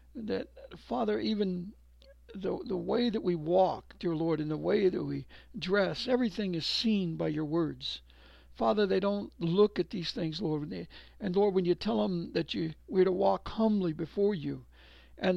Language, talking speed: English, 180 wpm